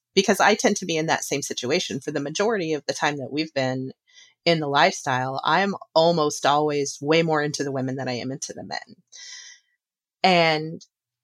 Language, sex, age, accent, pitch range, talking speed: English, female, 30-49, American, 140-175 Hz, 190 wpm